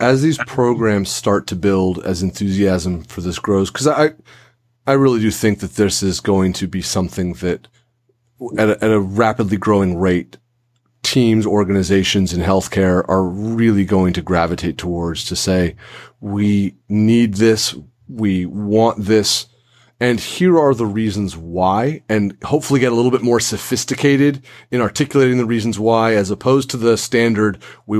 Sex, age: male, 30-49